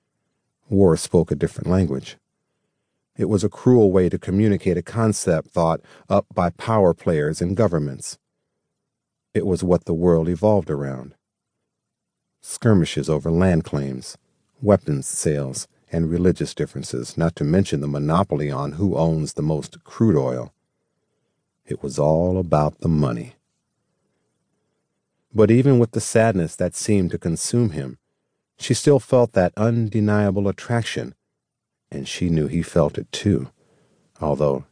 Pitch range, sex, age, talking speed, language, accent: 80-110 Hz, male, 50-69, 135 wpm, English, American